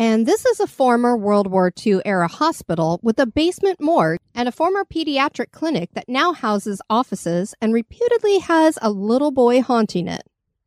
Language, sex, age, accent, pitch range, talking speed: English, female, 40-59, American, 210-310 Hz, 170 wpm